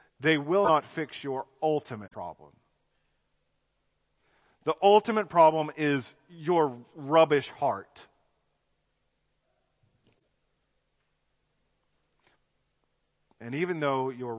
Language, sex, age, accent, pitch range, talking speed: English, male, 40-59, American, 120-155 Hz, 75 wpm